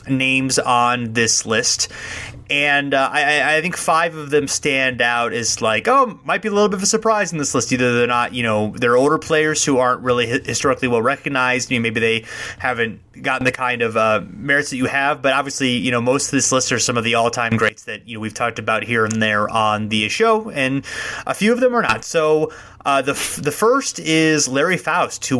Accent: American